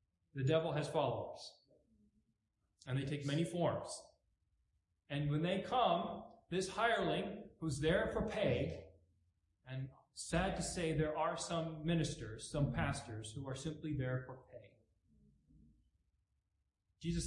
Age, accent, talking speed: 40-59, American, 125 wpm